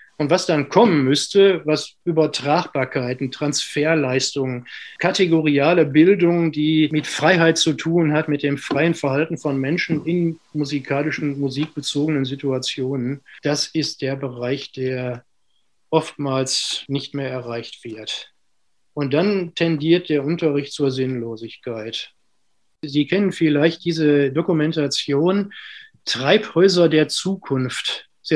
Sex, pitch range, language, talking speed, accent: male, 140-175 Hz, German, 110 wpm, German